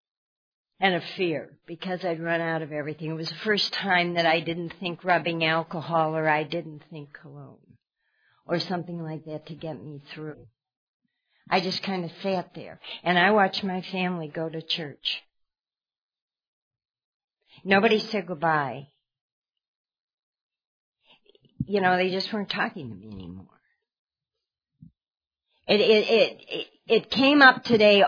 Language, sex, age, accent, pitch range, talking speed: English, female, 50-69, American, 160-210 Hz, 145 wpm